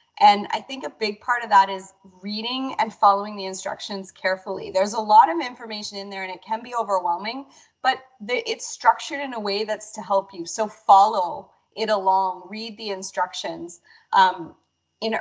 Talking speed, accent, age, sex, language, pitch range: 180 wpm, American, 30-49, female, English, 195-245 Hz